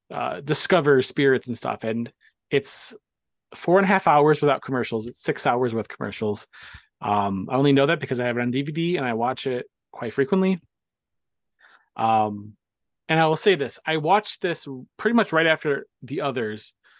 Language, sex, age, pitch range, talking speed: English, male, 30-49, 125-160 Hz, 180 wpm